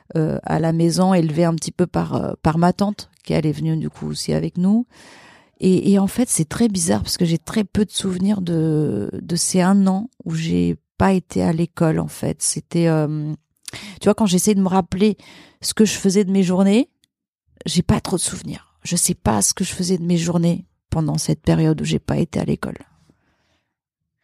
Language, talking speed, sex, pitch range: French, 220 wpm, female, 160-190 Hz